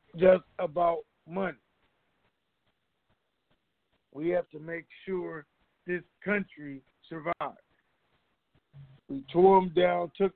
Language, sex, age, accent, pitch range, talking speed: English, male, 50-69, American, 160-195 Hz, 95 wpm